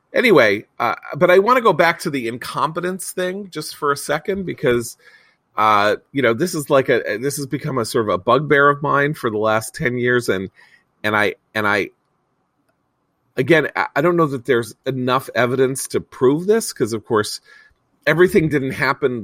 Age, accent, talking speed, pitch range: 40-59, American, 190 wpm, 105-145 Hz